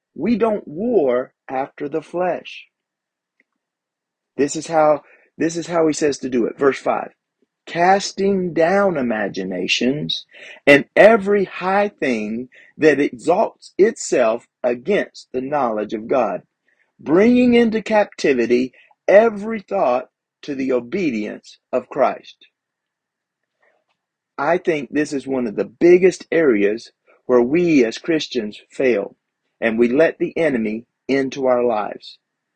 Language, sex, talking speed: English, male, 120 wpm